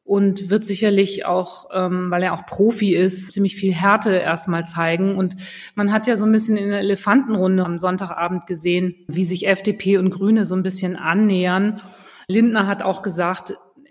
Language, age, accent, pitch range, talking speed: German, 30-49, German, 175-205 Hz, 175 wpm